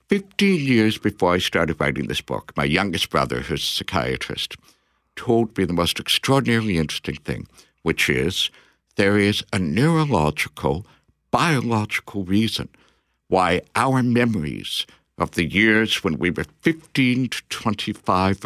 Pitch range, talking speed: 95-130 Hz, 135 wpm